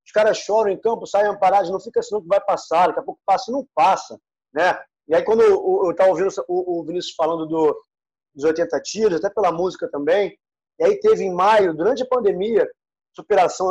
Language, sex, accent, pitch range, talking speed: Portuguese, male, Brazilian, 180-280 Hz, 210 wpm